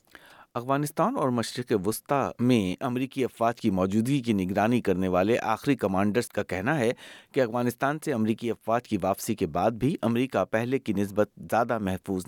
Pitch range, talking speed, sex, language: 95-120 Hz, 165 wpm, male, Urdu